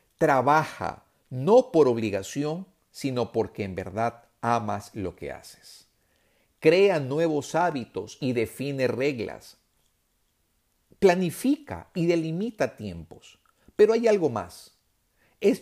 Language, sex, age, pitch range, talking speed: Spanish, male, 50-69, 115-165 Hz, 105 wpm